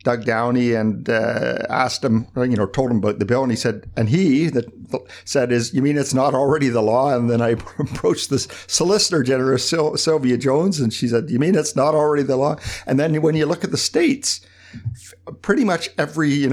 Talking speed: 210 wpm